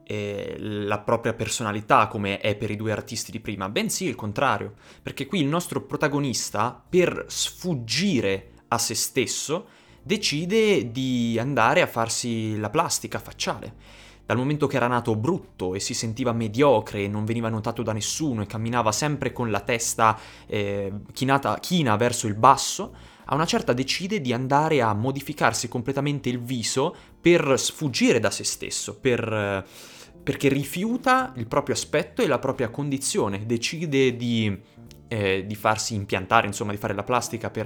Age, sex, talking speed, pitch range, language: 20-39, male, 155 wpm, 110-140 Hz, Italian